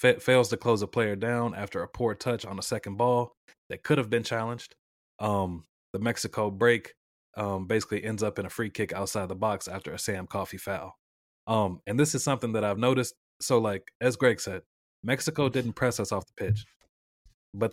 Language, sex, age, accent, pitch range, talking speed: English, male, 20-39, American, 100-120 Hz, 205 wpm